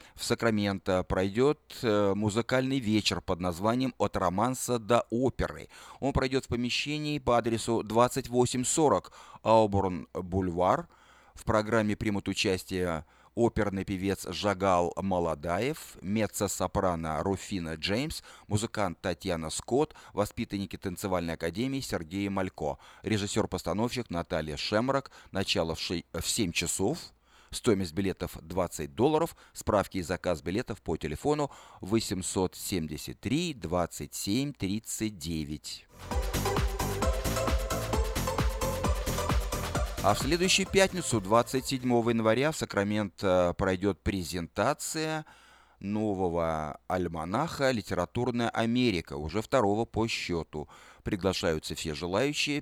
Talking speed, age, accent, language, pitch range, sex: 90 wpm, 30-49, native, Russian, 90-115 Hz, male